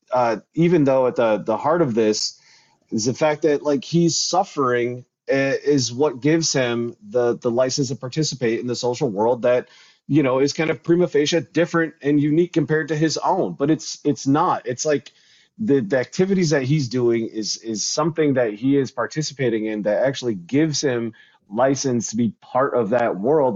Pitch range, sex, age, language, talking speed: 115-150 Hz, male, 30-49, English, 195 wpm